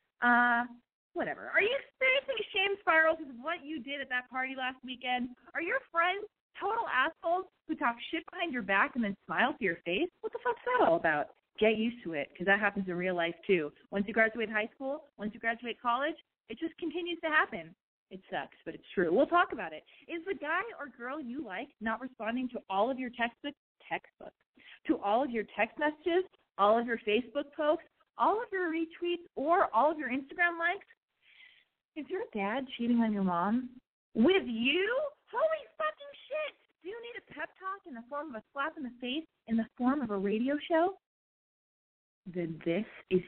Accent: American